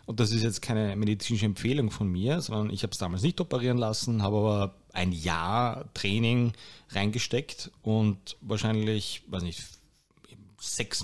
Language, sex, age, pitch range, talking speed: German, male, 30-49, 100-125 Hz, 150 wpm